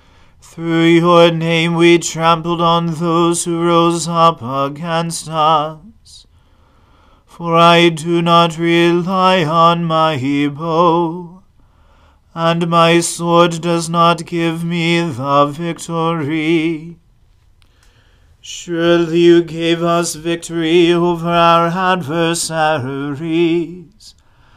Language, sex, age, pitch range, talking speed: English, male, 40-59, 150-170 Hz, 90 wpm